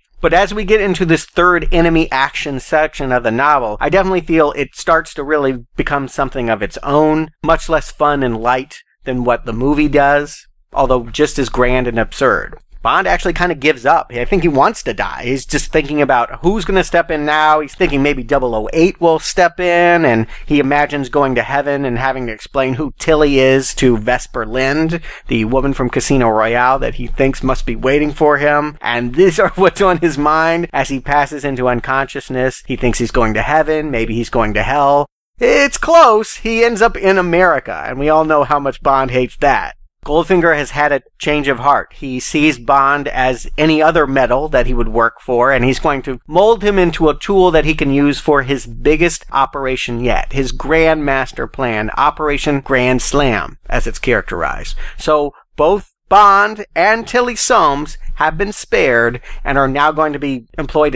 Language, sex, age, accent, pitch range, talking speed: English, male, 40-59, American, 130-160 Hz, 200 wpm